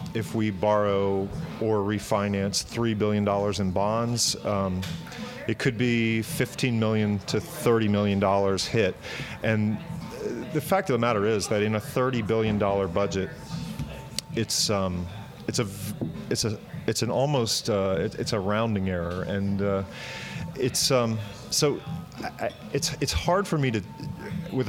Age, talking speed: 40-59, 155 wpm